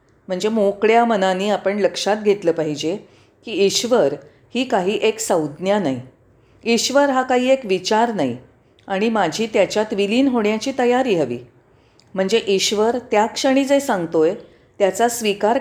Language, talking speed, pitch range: Marathi, 135 wpm, 145-230 Hz